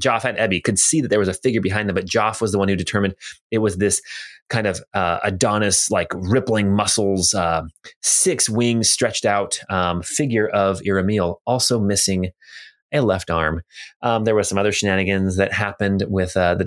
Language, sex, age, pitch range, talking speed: English, male, 20-39, 95-115 Hz, 195 wpm